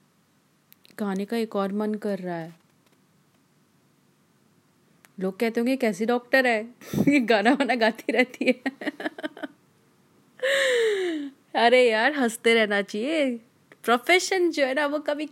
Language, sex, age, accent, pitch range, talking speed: Hindi, female, 30-49, native, 215-285 Hz, 120 wpm